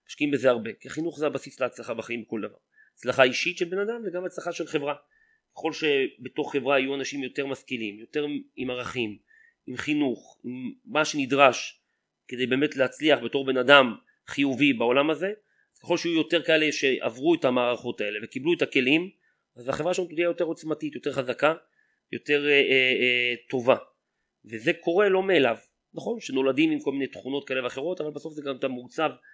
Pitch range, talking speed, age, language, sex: 125-155 Hz, 175 wpm, 30-49, Hebrew, male